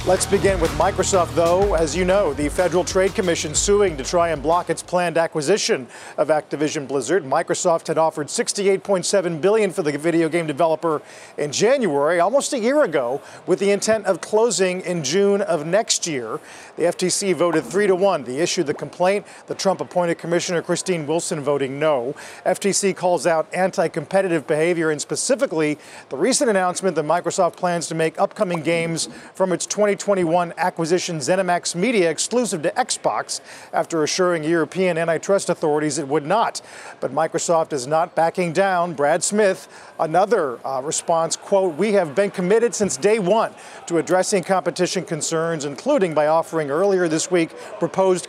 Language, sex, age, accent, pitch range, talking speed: English, male, 40-59, American, 160-195 Hz, 160 wpm